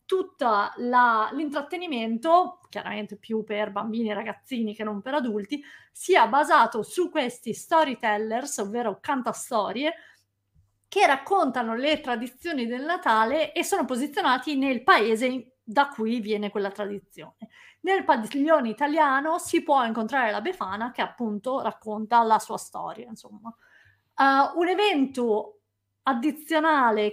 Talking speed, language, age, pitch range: 120 wpm, Italian, 30-49, 220-300 Hz